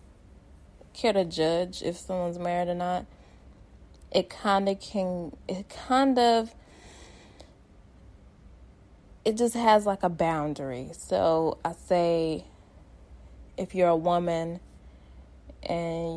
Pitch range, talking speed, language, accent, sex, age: 155-180 Hz, 110 wpm, English, American, female, 20-39